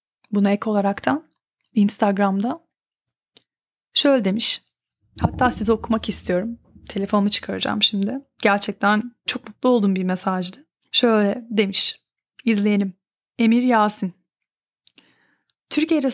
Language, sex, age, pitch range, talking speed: Turkish, female, 30-49, 205-255 Hz, 95 wpm